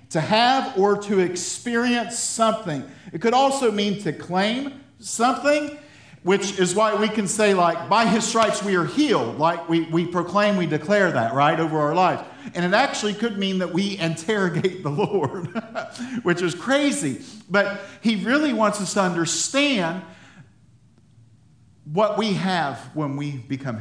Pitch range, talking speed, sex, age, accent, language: 150-215 Hz, 160 wpm, male, 50-69, American, English